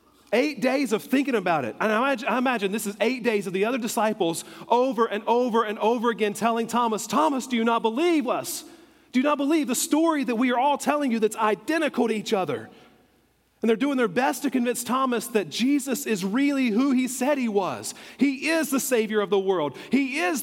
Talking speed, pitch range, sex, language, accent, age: 220 wpm, 195-270 Hz, male, English, American, 40-59